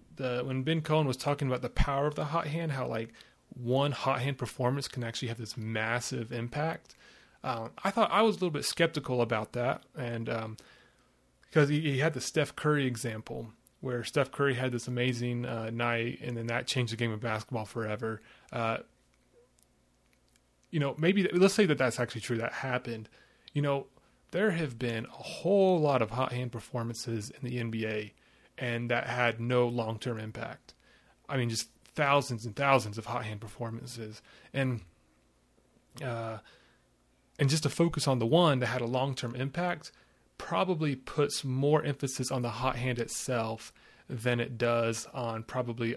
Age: 30-49